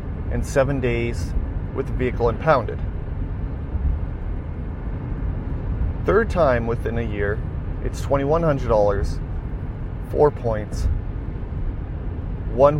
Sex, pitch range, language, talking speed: male, 85-120 Hz, English, 80 wpm